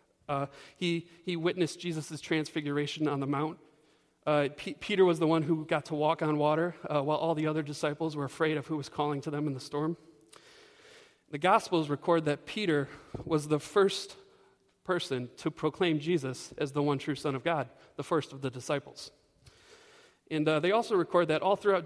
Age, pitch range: 40-59, 145-175 Hz